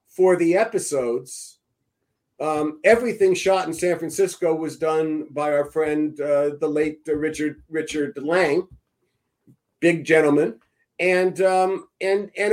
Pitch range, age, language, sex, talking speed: 155-190 Hz, 50-69, English, male, 130 wpm